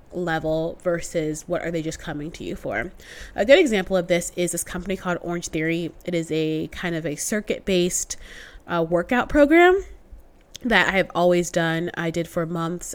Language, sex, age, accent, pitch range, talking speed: English, female, 20-39, American, 170-205 Hz, 190 wpm